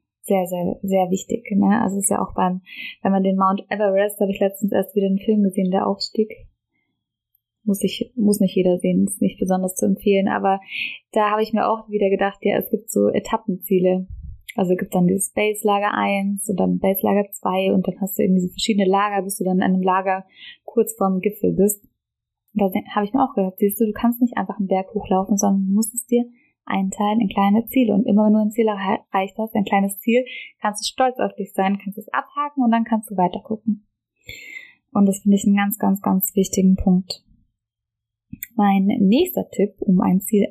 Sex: female